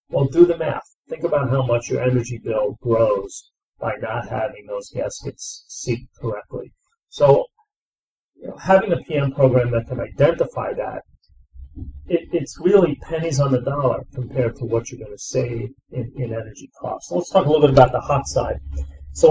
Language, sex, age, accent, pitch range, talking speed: English, male, 40-59, American, 120-150 Hz, 185 wpm